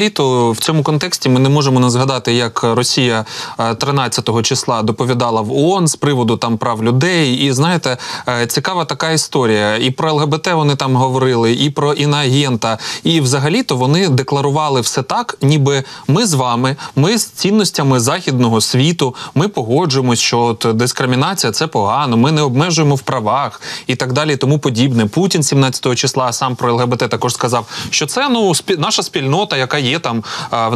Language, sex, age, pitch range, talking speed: Ukrainian, male, 20-39, 125-150 Hz, 170 wpm